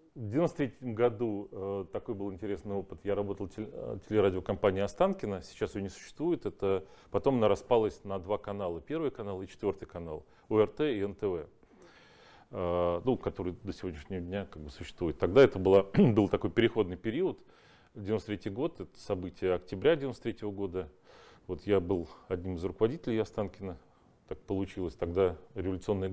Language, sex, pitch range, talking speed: Russian, male, 95-115 Hz, 150 wpm